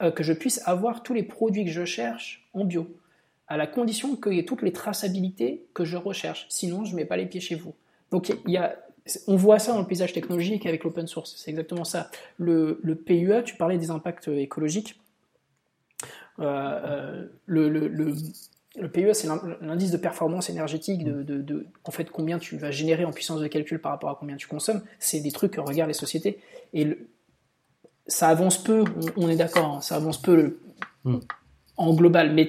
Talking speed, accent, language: 200 wpm, French, French